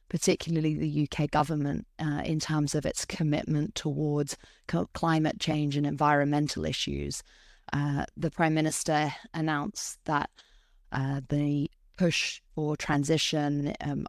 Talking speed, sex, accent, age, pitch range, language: 125 wpm, female, British, 20-39, 145-165 Hz, English